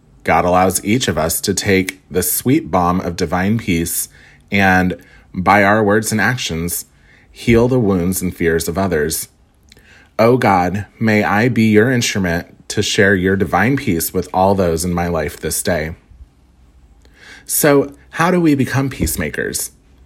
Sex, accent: male, American